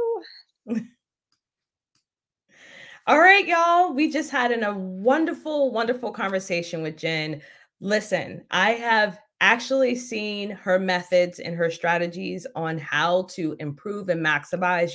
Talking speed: 110 wpm